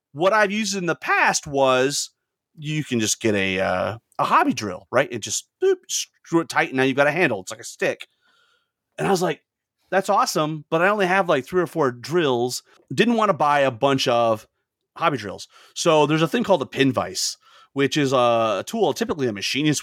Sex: male